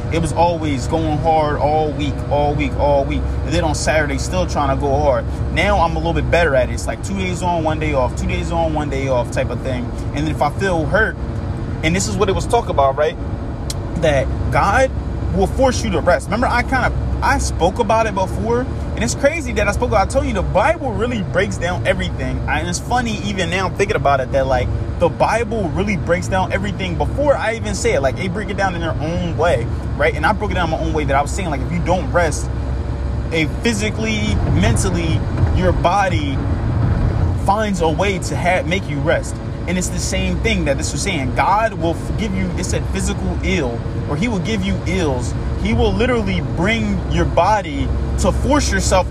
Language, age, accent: English, 20-39, American